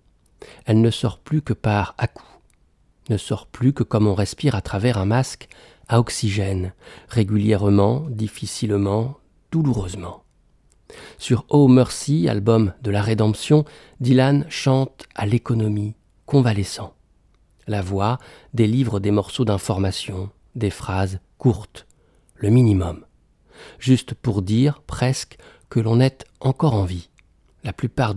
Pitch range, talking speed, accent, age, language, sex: 100-120 Hz, 125 wpm, French, 50-69, French, male